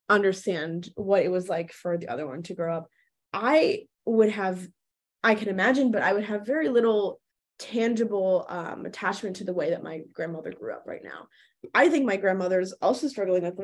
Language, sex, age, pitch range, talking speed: English, female, 20-39, 180-225 Hz, 200 wpm